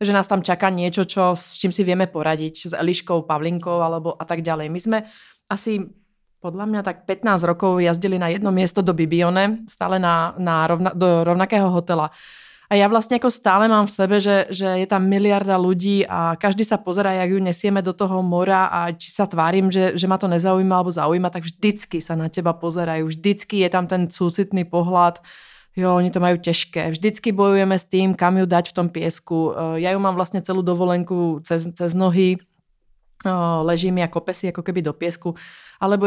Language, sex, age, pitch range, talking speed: Czech, female, 30-49, 170-195 Hz, 200 wpm